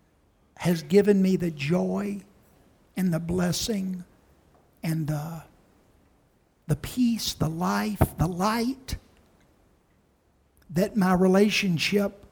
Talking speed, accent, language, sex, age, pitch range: 95 wpm, American, English, male, 60-79, 160-190 Hz